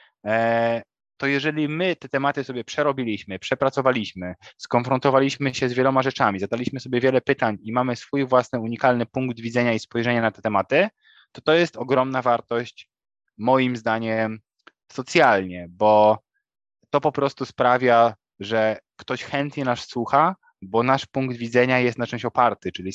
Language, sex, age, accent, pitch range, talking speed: Polish, male, 20-39, native, 110-130 Hz, 145 wpm